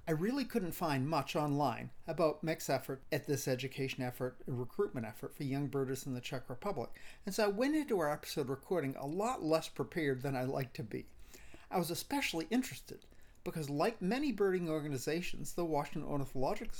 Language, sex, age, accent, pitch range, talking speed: English, male, 50-69, American, 140-205 Hz, 185 wpm